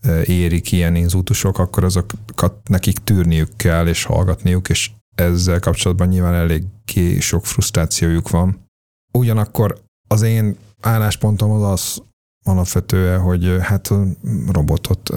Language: Hungarian